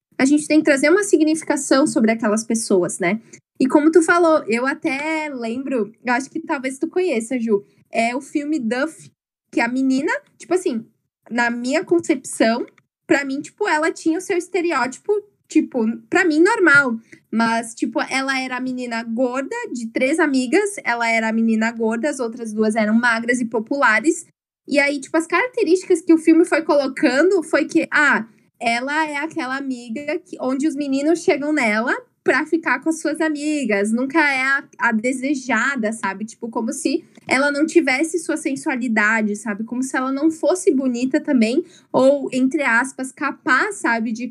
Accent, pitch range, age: Brazilian, 235-320 Hz, 10-29